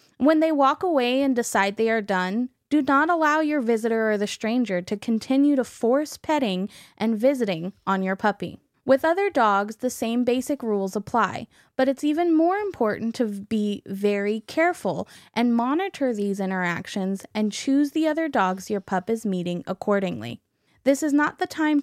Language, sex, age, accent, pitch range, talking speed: English, female, 10-29, American, 200-280 Hz, 175 wpm